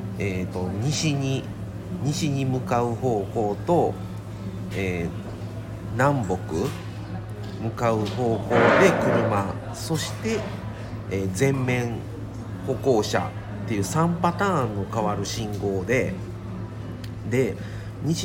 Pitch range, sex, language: 100-130 Hz, male, Japanese